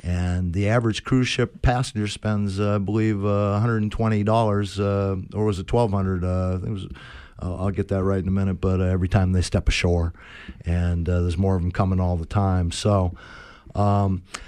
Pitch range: 95-115 Hz